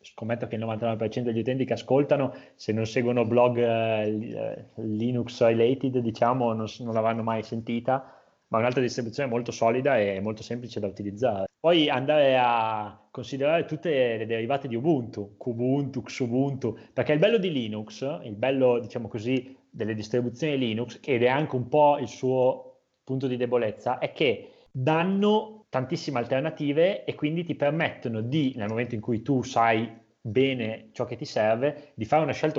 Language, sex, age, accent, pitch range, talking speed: Italian, male, 20-39, native, 115-135 Hz, 165 wpm